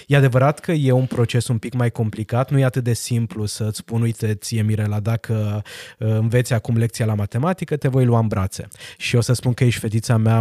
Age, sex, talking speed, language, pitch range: 20-39, male, 225 wpm, Romanian, 110-140 Hz